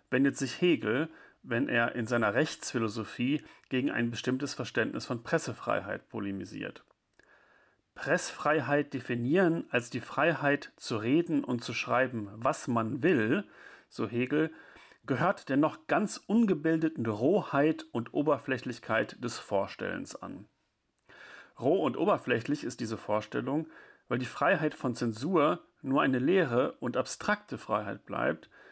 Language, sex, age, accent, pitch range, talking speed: German, male, 40-59, German, 115-145 Hz, 125 wpm